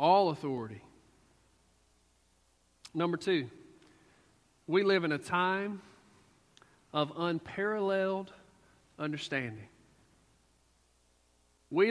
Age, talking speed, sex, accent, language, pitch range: 40-59, 65 wpm, male, American, English, 130-190 Hz